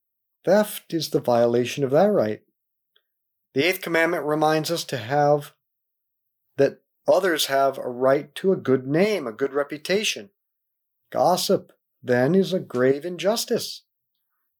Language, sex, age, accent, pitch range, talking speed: English, male, 50-69, American, 125-195 Hz, 130 wpm